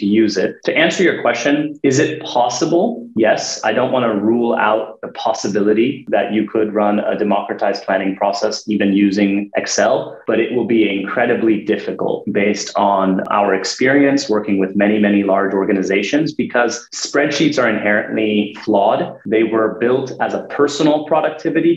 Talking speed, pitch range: 155 wpm, 105-120 Hz